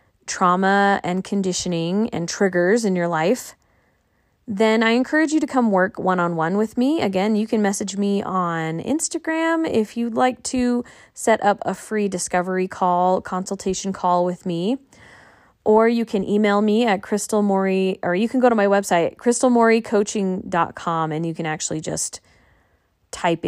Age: 20-39